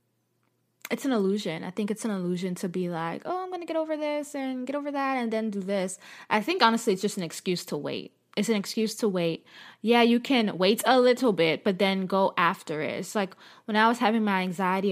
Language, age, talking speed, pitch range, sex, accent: English, 20-39, 240 wpm, 185-235 Hz, female, American